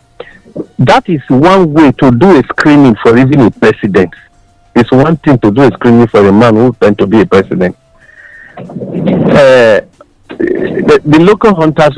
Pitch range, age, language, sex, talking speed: 110-150 Hz, 50-69, English, male, 165 wpm